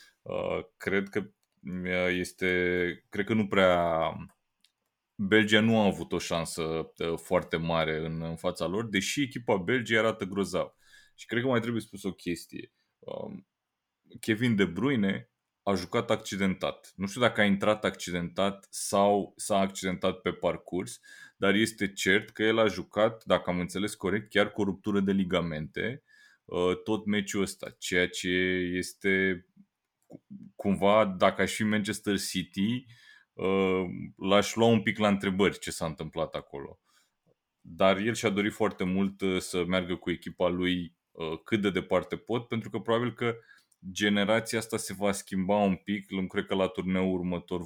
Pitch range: 90-110 Hz